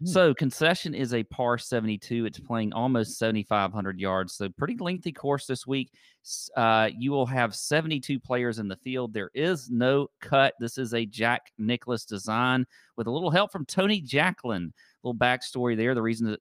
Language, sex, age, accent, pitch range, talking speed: English, male, 40-59, American, 110-150 Hz, 180 wpm